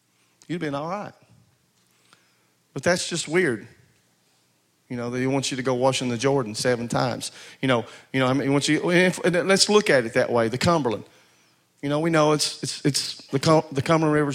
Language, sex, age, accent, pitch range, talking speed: English, male, 40-59, American, 130-170 Hz, 230 wpm